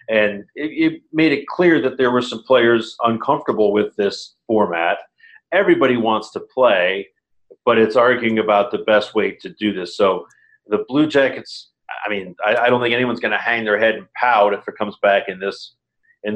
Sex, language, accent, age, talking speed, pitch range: male, English, American, 40-59, 200 wpm, 105-130 Hz